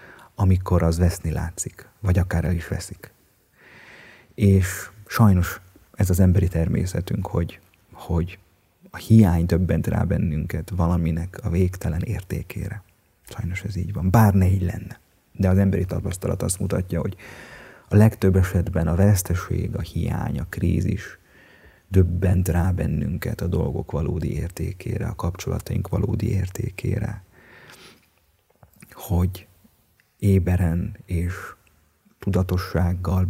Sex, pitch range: male, 85-100 Hz